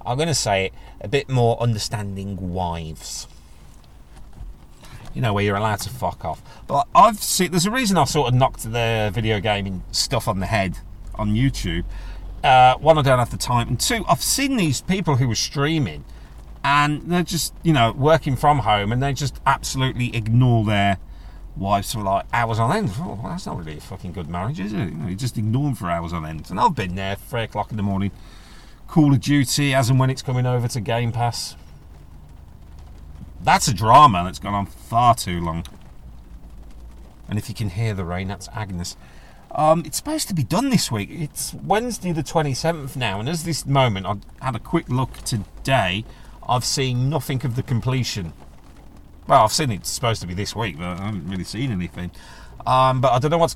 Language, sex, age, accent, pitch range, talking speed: English, male, 40-59, British, 95-135 Hz, 205 wpm